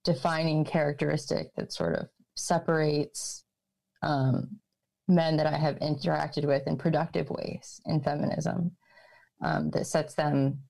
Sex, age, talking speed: female, 20-39, 125 wpm